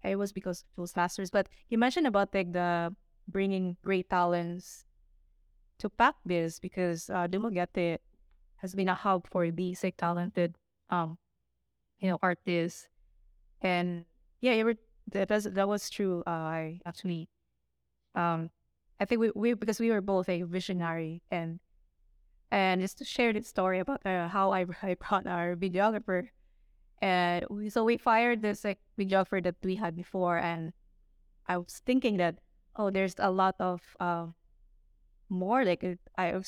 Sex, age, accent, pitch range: female, 20-39, Filipino, 170-200 Hz